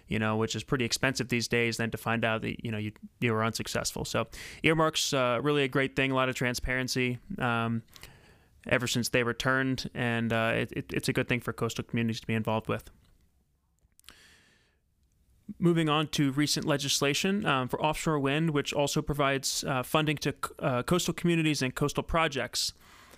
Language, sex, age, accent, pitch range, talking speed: English, male, 20-39, American, 120-145 Hz, 180 wpm